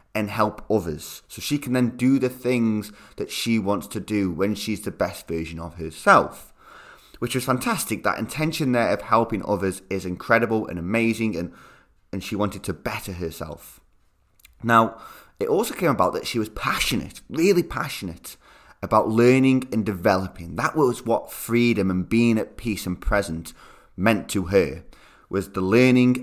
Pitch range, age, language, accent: 100-130 Hz, 20-39, English, British